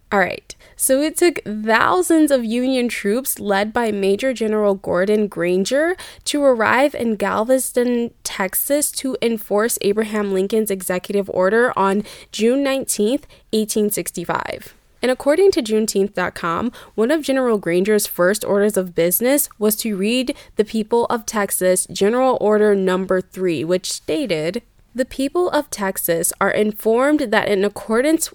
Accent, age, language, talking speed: American, 10-29, English, 135 wpm